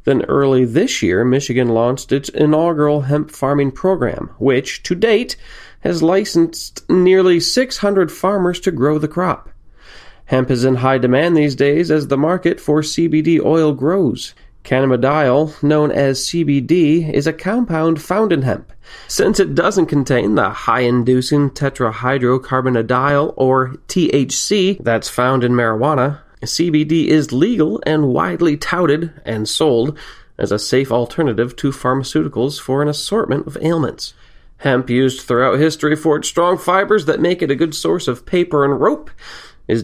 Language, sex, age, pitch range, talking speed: English, male, 30-49, 130-170 Hz, 150 wpm